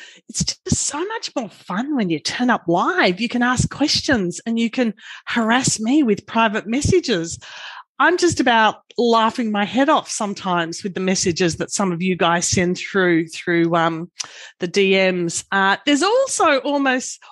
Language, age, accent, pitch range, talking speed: English, 40-59, Australian, 180-245 Hz, 170 wpm